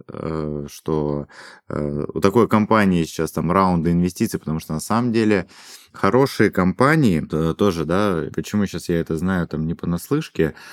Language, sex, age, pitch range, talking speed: Russian, male, 20-39, 75-95 Hz, 140 wpm